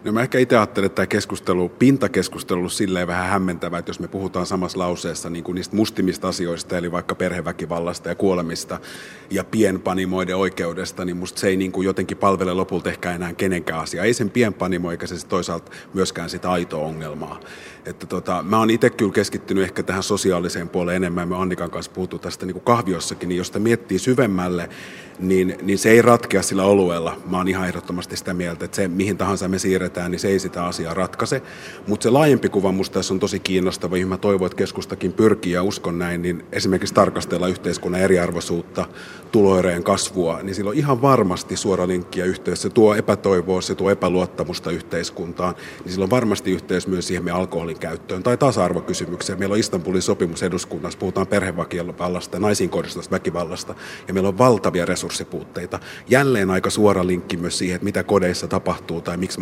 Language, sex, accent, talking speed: Finnish, male, native, 180 wpm